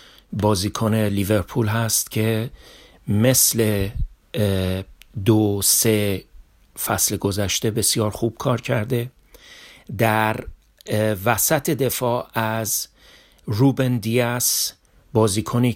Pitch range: 105-125 Hz